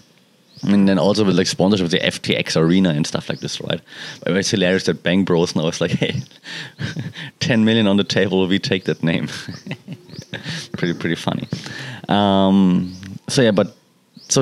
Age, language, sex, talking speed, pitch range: 30-49, English, male, 165 wpm, 90-115 Hz